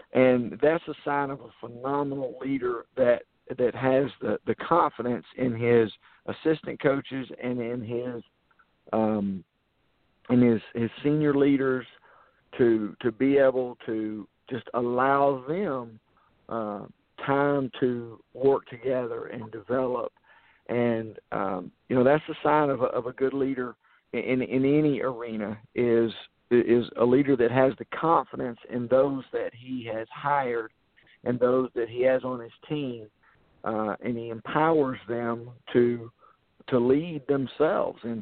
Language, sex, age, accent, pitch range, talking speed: English, male, 50-69, American, 115-140 Hz, 145 wpm